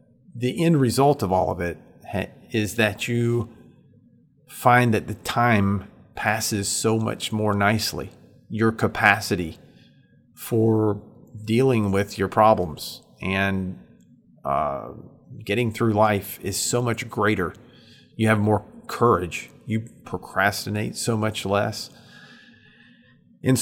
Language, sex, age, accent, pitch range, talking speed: English, male, 40-59, American, 100-120 Hz, 115 wpm